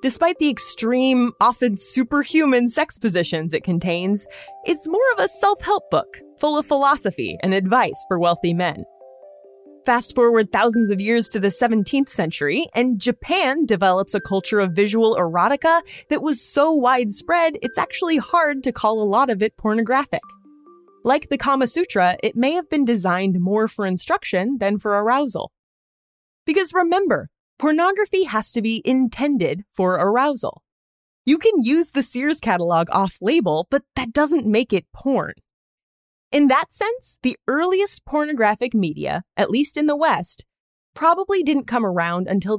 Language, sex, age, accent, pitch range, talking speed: English, female, 20-39, American, 190-290 Hz, 150 wpm